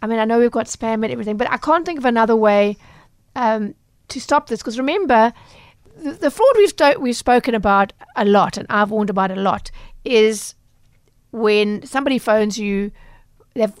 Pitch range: 210-245 Hz